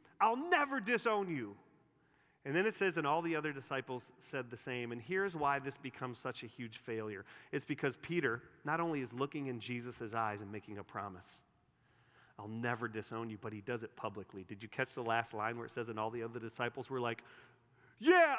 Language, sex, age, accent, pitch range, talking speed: English, male, 40-59, American, 135-195 Hz, 210 wpm